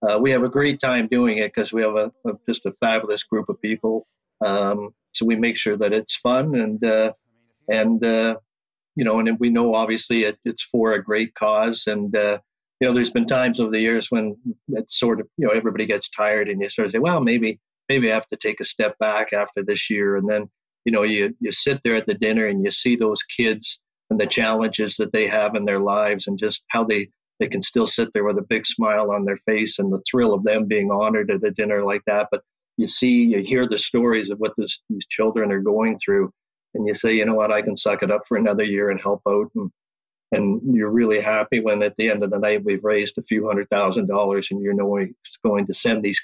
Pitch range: 105-120 Hz